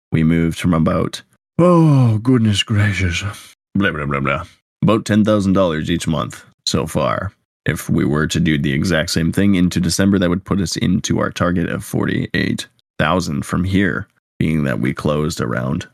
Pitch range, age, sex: 80-100 Hz, 20-39, male